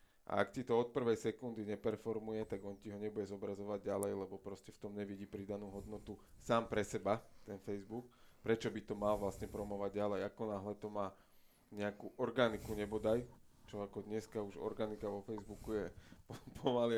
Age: 20-39